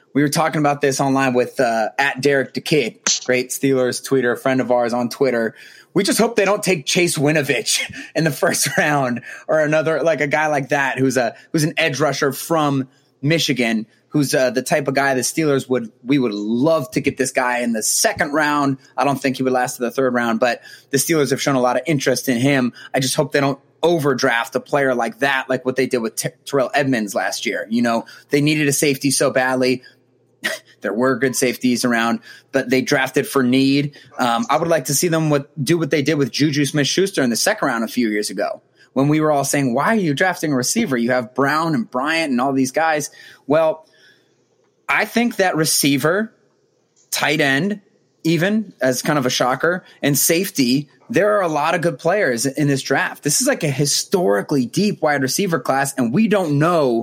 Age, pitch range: 20-39, 130-160 Hz